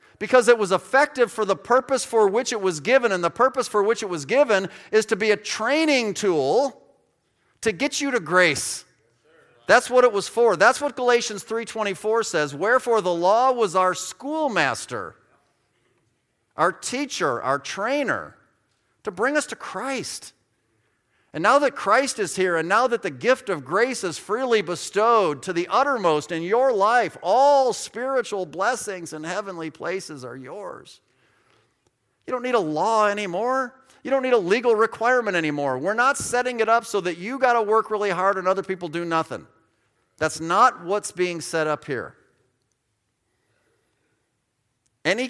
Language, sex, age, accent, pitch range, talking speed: English, male, 40-59, American, 165-245 Hz, 165 wpm